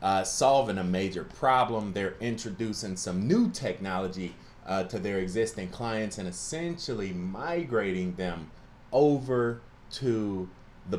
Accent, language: American, English